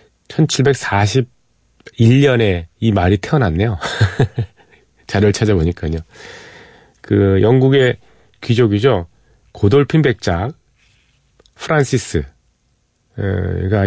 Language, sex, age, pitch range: Korean, male, 40-59, 95-125 Hz